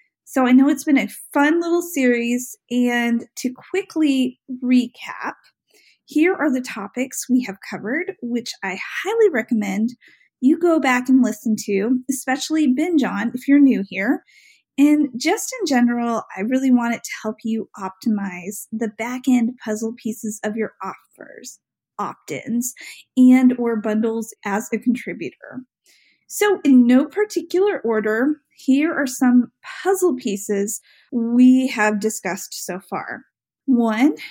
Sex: female